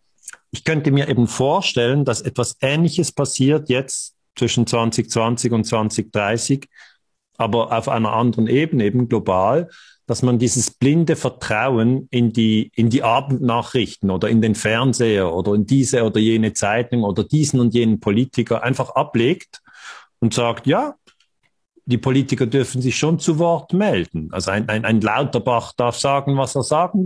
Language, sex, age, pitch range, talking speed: German, male, 50-69, 115-140 Hz, 150 wpm